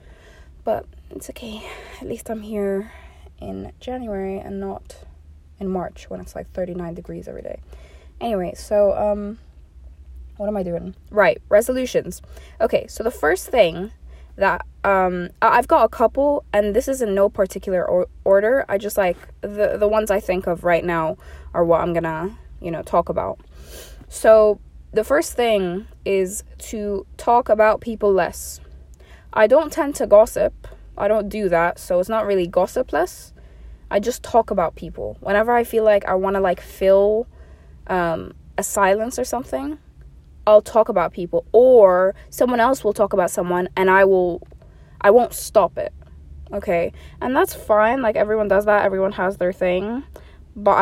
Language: English